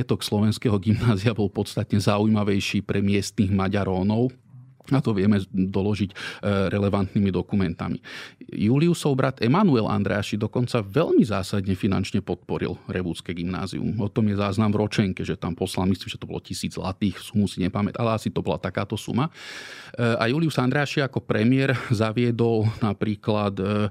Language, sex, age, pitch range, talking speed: Slovak, male, 40-59, 100-115 Hz, 140 wpm